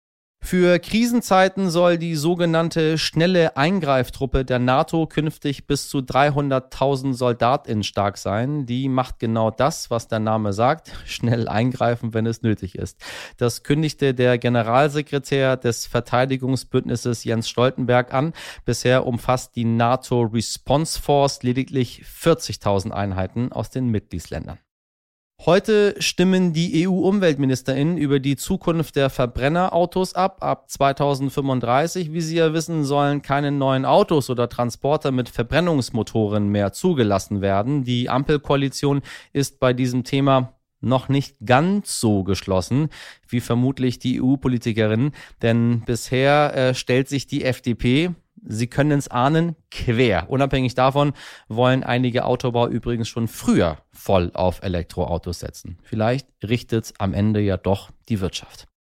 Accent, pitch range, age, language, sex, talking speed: German, 115-145 Hz, 30-49, German, male, 125 wpm